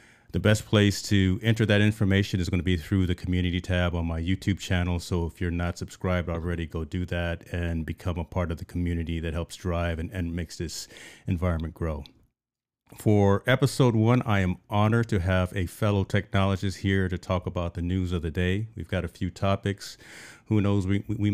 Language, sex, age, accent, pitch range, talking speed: English, male, 40-59, American, 85-105 Hz, 205 wpm